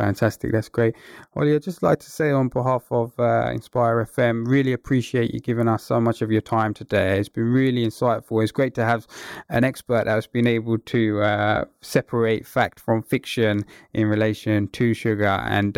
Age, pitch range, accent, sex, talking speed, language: 20-39, 110-125 Hz, British, male, 190 wpm, English